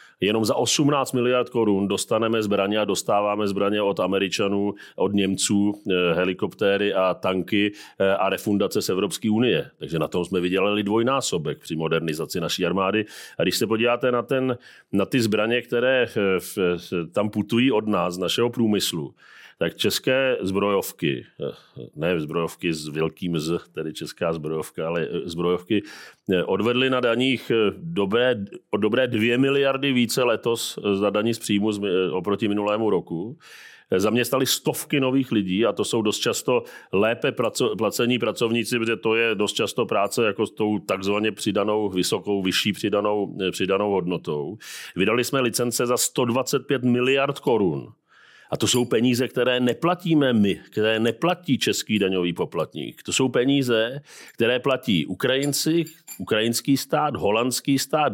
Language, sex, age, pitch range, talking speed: Czech, male, 40-59, 100-130 Hz, 135 wpm